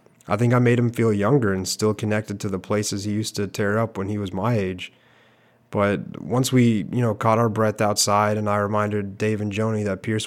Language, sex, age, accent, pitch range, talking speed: English, male, 30-49, American, 100-115 Hz, 235 wpm